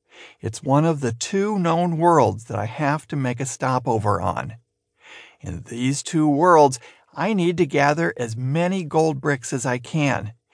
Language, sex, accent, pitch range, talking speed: English, male, American, 120-160 Hz, 170 wpm